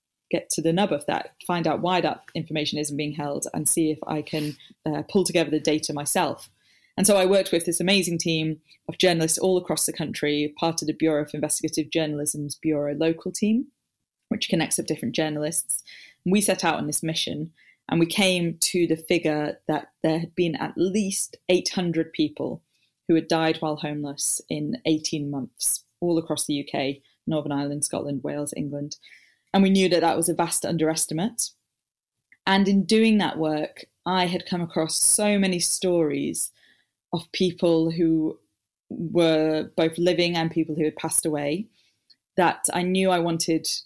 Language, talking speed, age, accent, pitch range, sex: English, 175 wpm, 20-39, British, 150-175 Hz, female